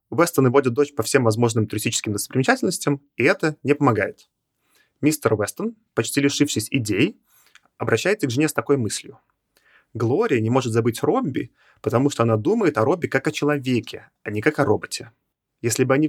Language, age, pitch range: Russian, 30-49, 115-150 Hz